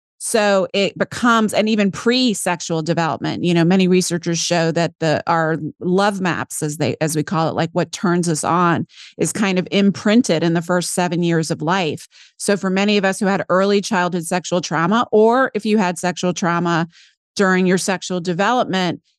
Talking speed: 190 wpm